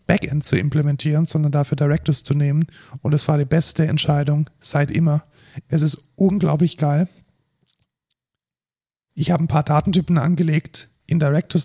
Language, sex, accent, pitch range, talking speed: German, male, German, 145-165 Hz, 145 wpm